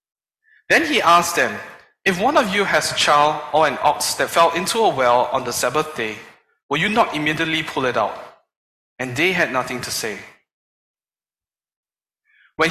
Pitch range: 145-210 Hz